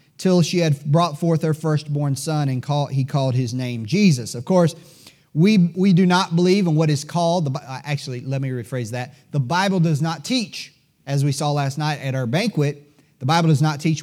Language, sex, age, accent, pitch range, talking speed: English, male, 30-49, American, 130-165 Hz, 210 wpm